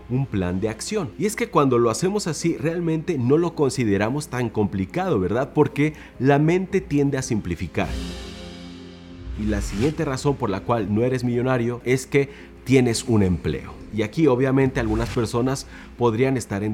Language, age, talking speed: Spanish, 40-59, 170 wpm